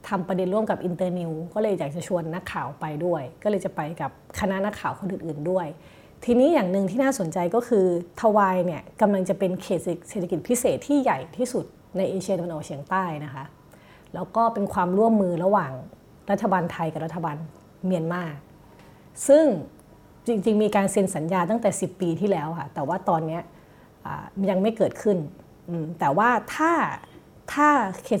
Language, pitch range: Thai, 170-205 Hz